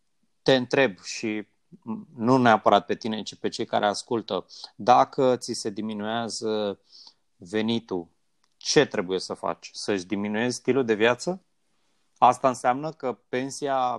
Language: Romanian